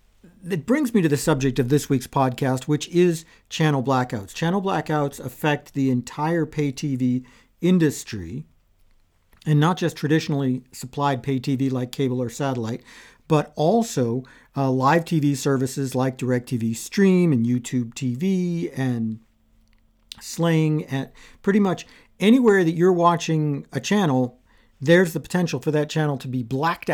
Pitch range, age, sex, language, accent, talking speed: 130-165 Hz, 50-69, male, English, American, 145 wpm